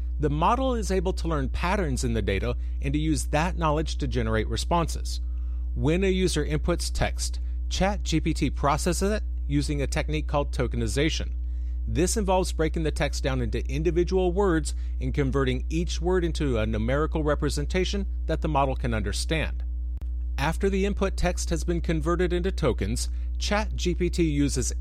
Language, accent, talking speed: English, American, 155 wpm